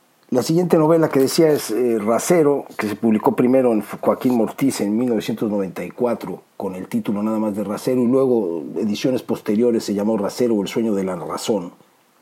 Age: 50-69